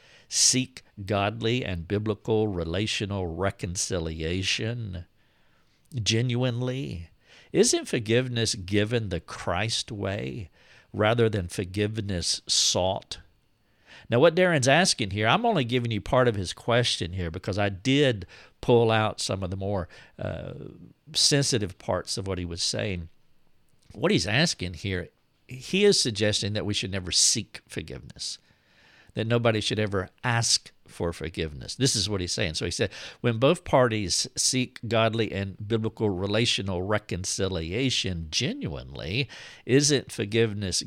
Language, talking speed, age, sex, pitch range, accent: English, 130 wpm, 60-79, male, 95-125 Hz, American